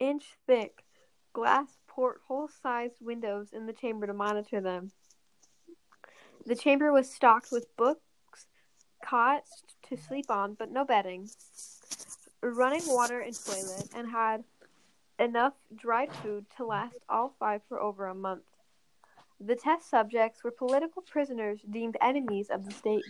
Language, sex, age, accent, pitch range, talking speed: English, female, 10-29, American, 210-275 Hz, 130 wpm